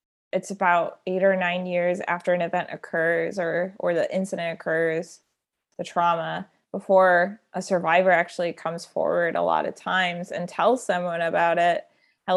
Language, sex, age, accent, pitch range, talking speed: English, female, 20-39, American, 175-200 Hz, 160 wpm